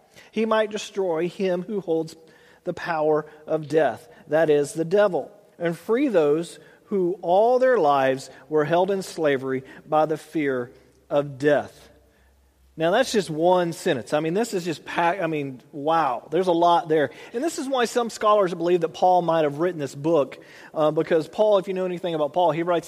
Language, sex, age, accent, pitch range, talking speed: English, male, 40-59, American, 155-200 Hz, 190 wpm